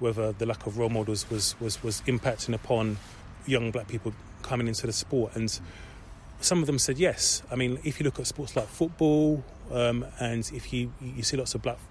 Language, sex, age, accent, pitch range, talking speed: English, male, 30-49, British, 110-135 Hz, 210 wpm